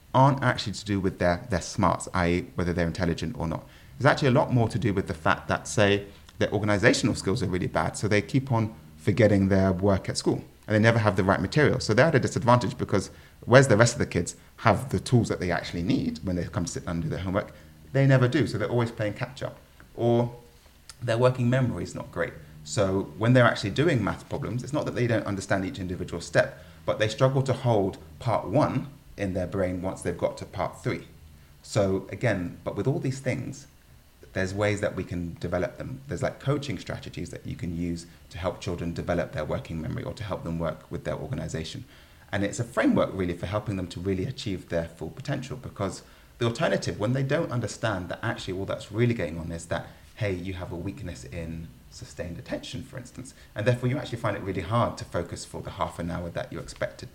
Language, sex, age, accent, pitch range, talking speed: English, male, 30-49, British, 85-120 Hz, 230 wpm